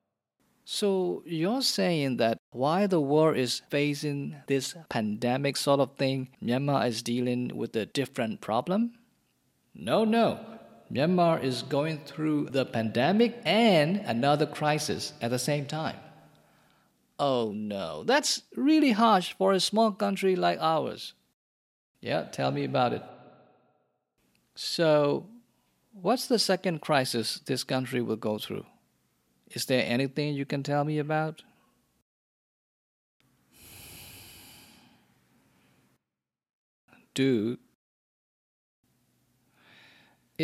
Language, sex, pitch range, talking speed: English, male, 125-190 Hz, 105 wpm